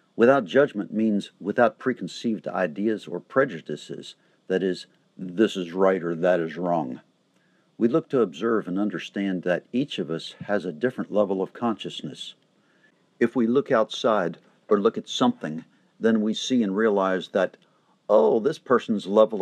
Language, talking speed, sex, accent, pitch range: English, 160 wpm, male, American, 95-120 Hz